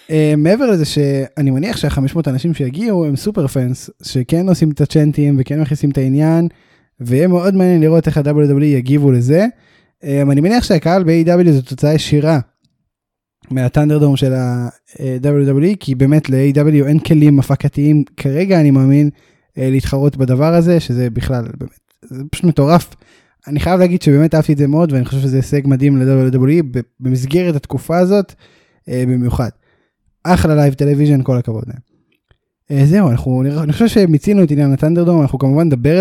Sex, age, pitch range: male, 10-29, 135-165 Hz